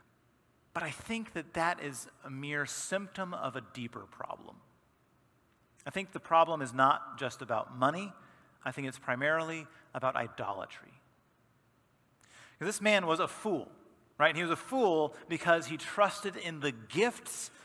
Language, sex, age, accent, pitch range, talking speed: English, male, 40-59, American, 135-190 Hz, 150 wpm